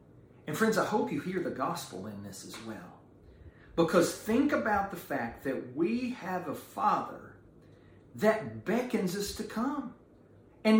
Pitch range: 155-230 Hz